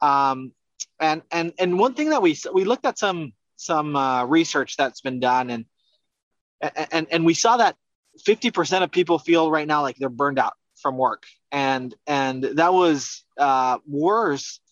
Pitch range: 135-170 Hz